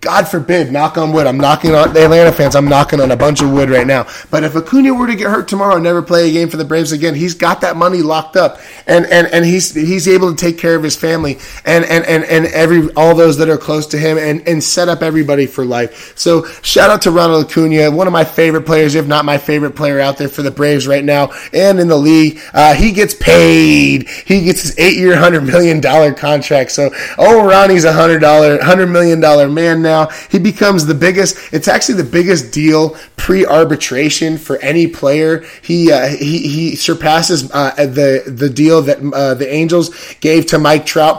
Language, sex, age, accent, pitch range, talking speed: English, male, 20-39, American, 150-175 Hz, 225 wpm